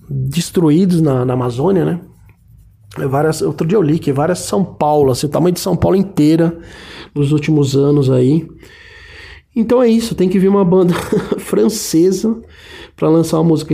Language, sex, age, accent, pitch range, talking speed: Portuguese, male, 20-39, Brazilian, 135-170 Hz, 165 wpm